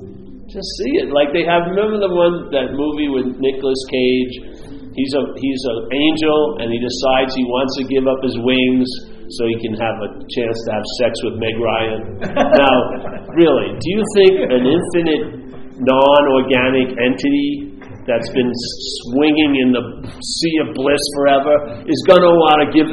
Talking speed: 170 wpm